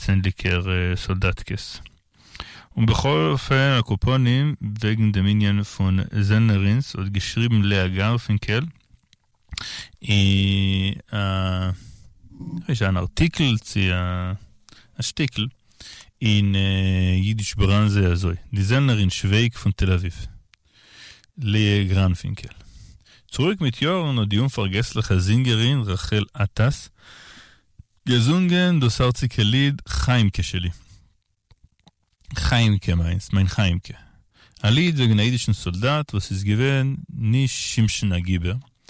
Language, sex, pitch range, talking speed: Hebrew, male, 100-125 Hz, 90 wpm